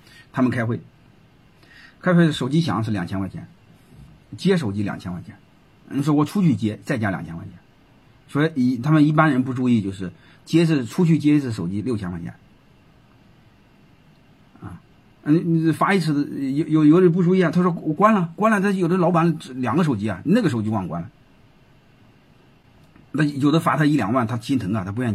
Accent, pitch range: native, 110-160 Hz